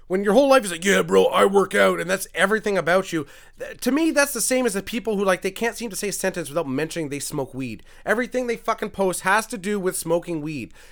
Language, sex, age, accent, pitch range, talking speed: English, male, 30-49, American, 155-215 Hz, 265 wpm